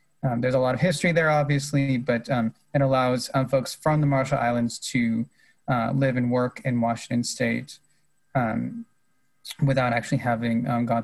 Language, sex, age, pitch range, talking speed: English, male, 20-39, 120-140 Hz, 175 wpm